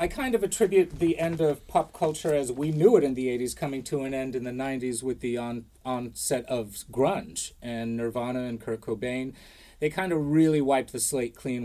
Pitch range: 110-145 Hz